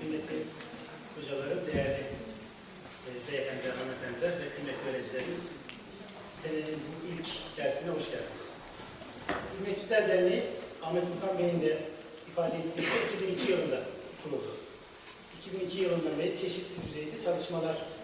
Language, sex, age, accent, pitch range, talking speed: Turkish, male, 40-59, native, 160-195 Hz, 115 wpm